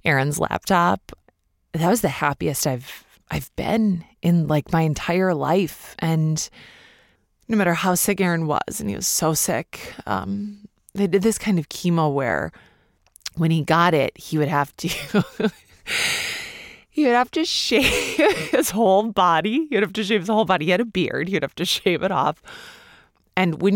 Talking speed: 175 wpm